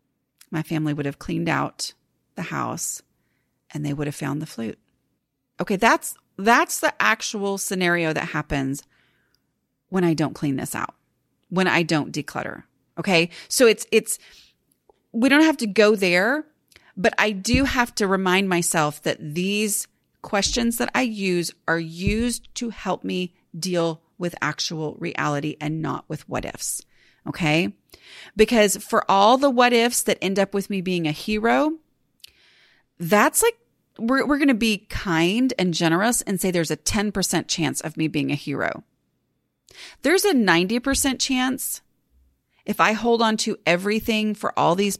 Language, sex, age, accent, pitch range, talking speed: English, female, 30-49, American, 165-235 Hz, 160 wpm